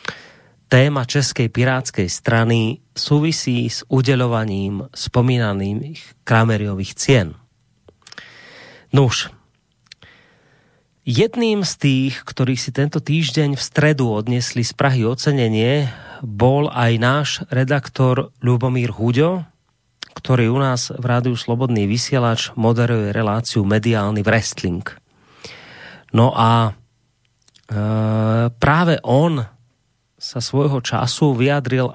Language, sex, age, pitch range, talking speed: Slovak, male, 30-49, 115-140 Hz, 95 wpm